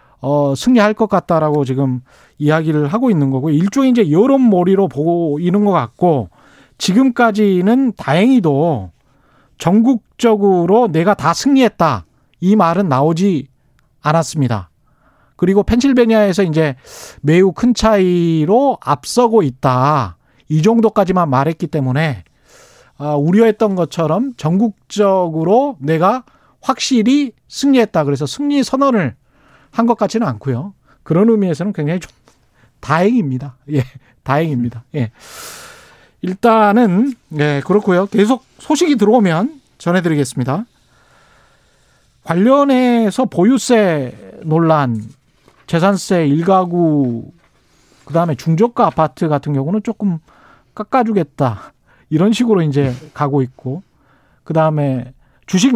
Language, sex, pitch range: Korean, male, 145-220 Hz